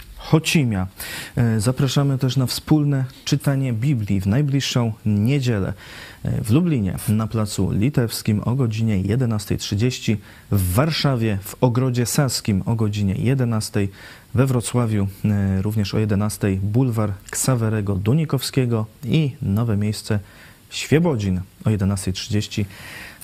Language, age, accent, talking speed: Polish, 30-49, native, 105 wpm